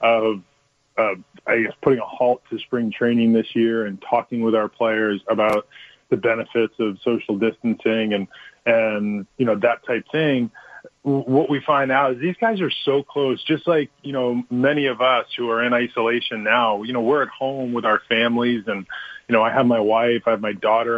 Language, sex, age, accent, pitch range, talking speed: English, male, 20-39, American, 110-130 Hz, 205 wpm